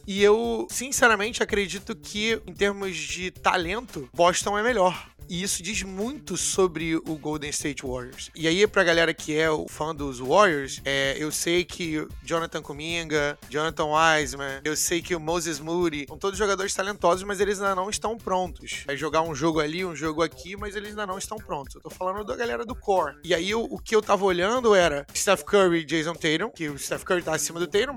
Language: Portuguese